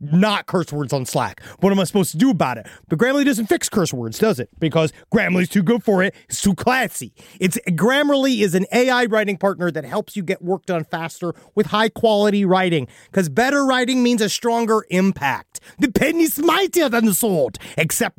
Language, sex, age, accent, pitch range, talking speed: English, male, 30-49, American, 175-235 Hz, 210 wpm